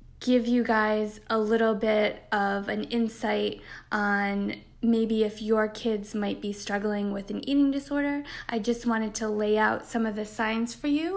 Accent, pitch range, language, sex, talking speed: American, 215-240 Hz, English, female, 175 wpm